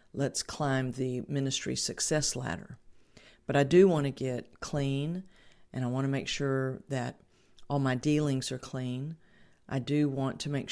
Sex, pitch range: female, 130-150 Hz